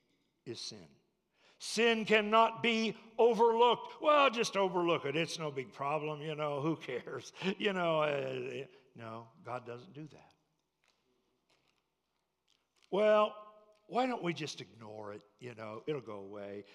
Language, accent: English, American